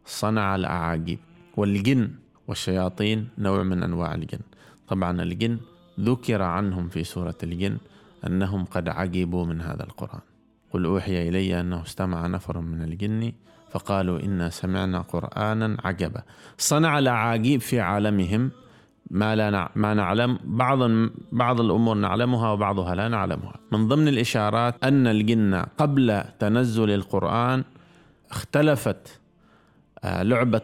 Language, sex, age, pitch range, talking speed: Arabic, male, 20-39, 95-125 Hz, 115 wpm